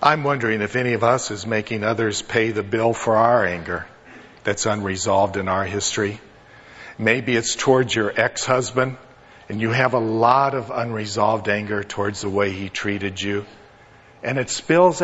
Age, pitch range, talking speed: 50-69, 105-145 Hz, 170 wpm